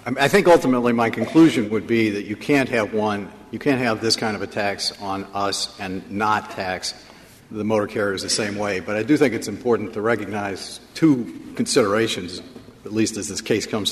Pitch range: 105-130 Hz